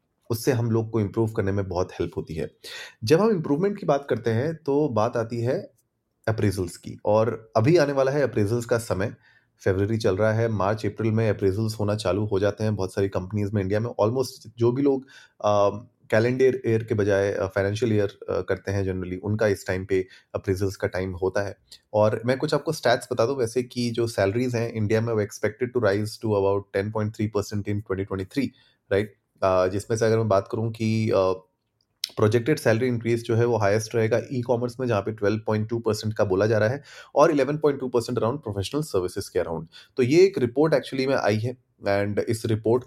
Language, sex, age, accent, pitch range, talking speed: Hindi, male, 30-49, native, 100-120 Hz, 205 wpm